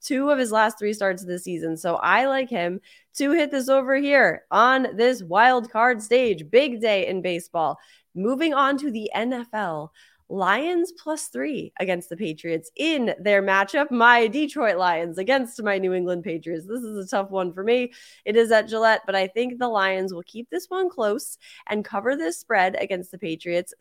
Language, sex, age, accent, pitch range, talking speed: English, female, 20-39, American, 190-265 Hz, 195 wpm